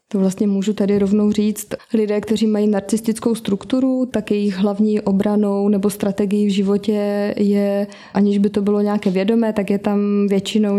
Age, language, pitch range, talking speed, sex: 20-39, Slovak, 200-210 Hz, 165 wpm, female